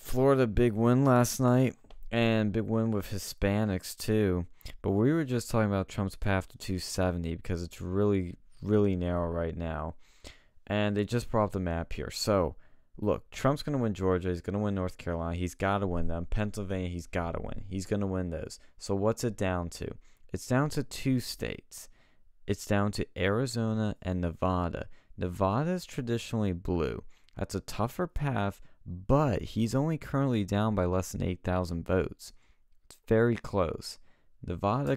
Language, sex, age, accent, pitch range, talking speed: English, male, 20-39, American, 85-115 Hz, 175 wpm